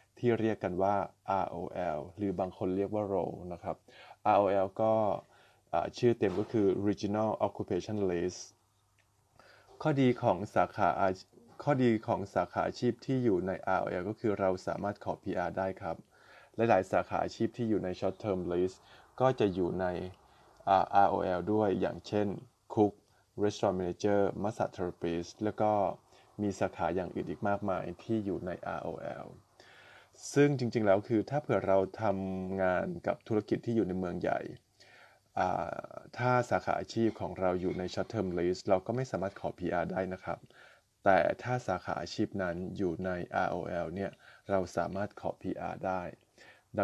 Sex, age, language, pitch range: male, 20-39, Thai, 95-110 Hz